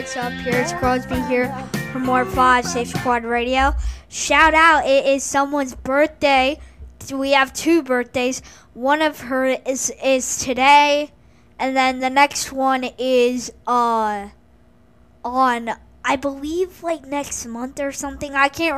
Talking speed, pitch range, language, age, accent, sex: 145 wpm, 240-280 Hz, English, 20-39, American, female